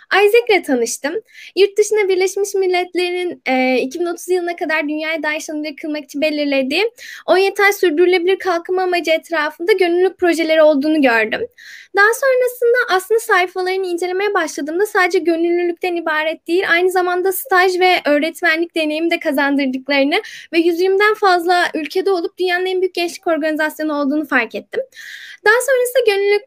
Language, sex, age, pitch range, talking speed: Turkish, female, 10-29, 300-400 Hz, 135 wpm